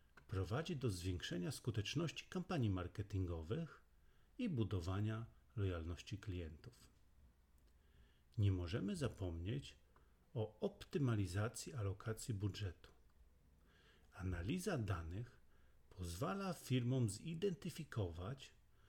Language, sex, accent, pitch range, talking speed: English, male, Polish, 90-125 Hz, 70 wpm